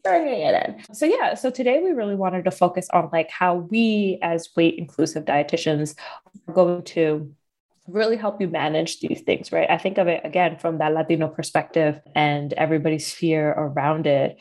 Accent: American